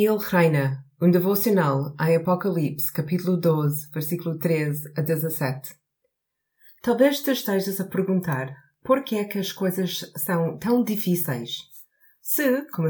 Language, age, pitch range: Portuguese, 30-49, 155-205 Hz